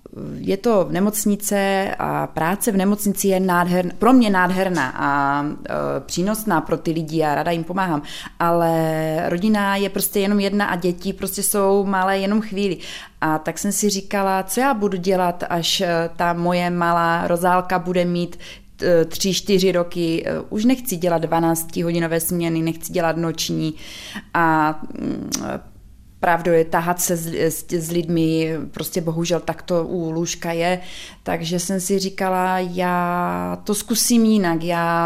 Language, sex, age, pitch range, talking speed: Czech, female, 20-39, 165-195 Hz, 150 wpm